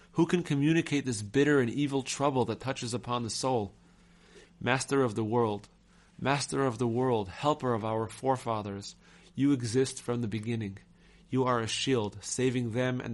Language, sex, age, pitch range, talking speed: English, male, 30-49, 110-135 Hz, 170 wpm